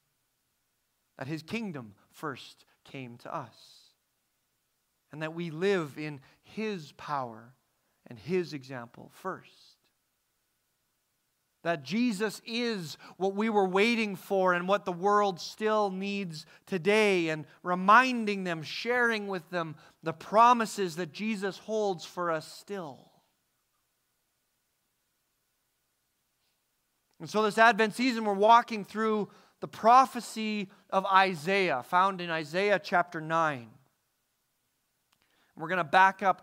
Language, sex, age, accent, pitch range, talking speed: English, male, 40-59, American, 165-215 Hz, 115 wpm